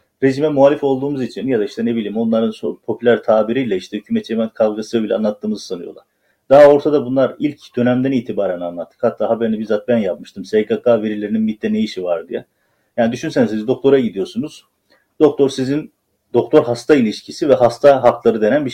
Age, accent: 40-59, native